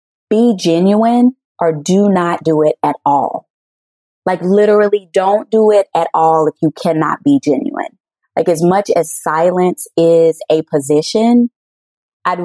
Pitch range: 160-205 Hz